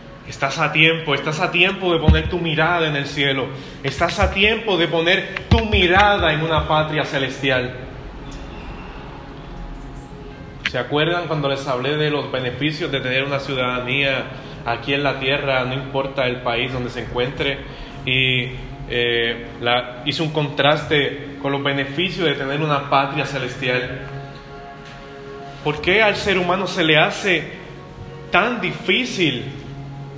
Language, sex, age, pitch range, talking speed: Spanish, male, 20-39, 135-160 Hz, 140 wpm